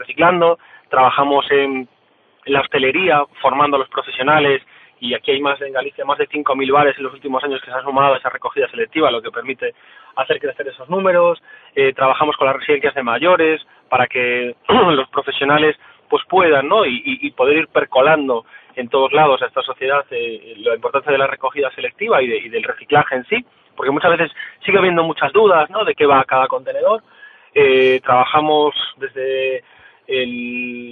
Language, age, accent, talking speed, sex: Spanish, 20-39, Spanish, 185 wpm, male